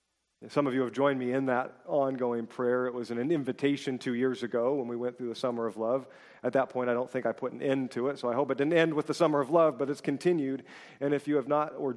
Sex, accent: male, American